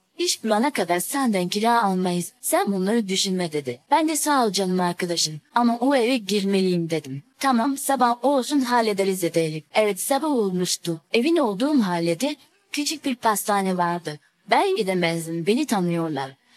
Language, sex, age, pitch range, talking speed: Turkish, female, 30-49, 180-255 Hz, 150 wpm